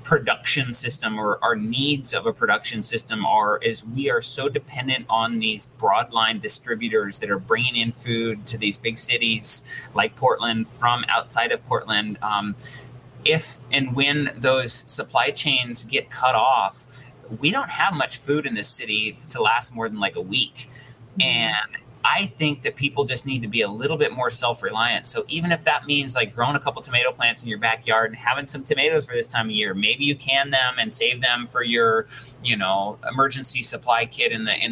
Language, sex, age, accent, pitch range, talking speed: English, male, 30-49, American, 115-145 Hz, 195 wpm